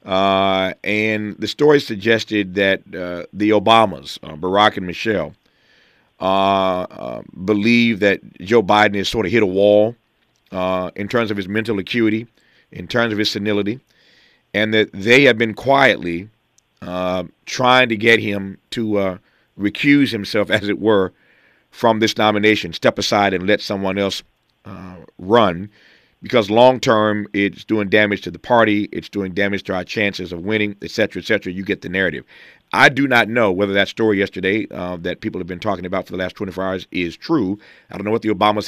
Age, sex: 40-59, male